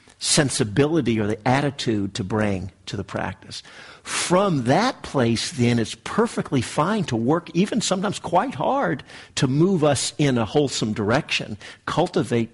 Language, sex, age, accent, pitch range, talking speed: English, male, 50-69, American, 110-145 Hz, 145 wpm